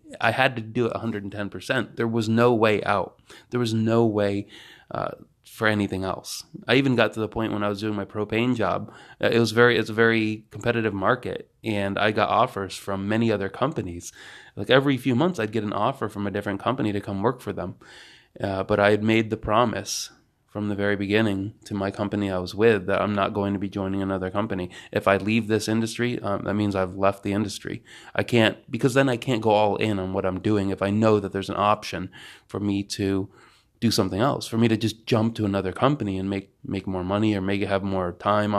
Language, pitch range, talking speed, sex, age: English, 100-115 Hz, 235 wpm, male, 20-39